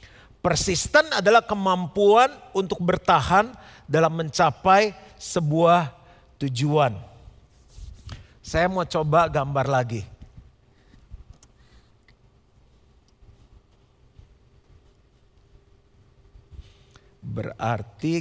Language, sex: Indonesian, male